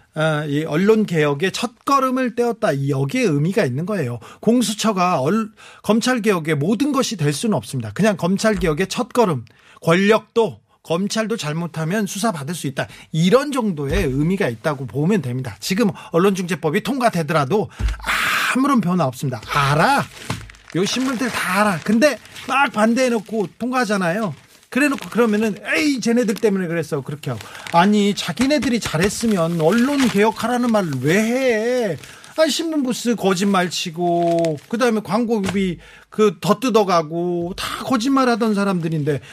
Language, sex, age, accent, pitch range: Korean, male, 40-59, native, 155-230 Hz